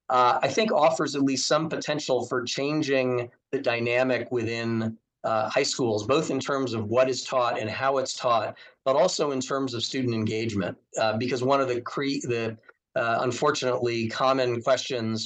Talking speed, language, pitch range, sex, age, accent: 175 wpm, English, 115-130 Hz, male, 40-59, American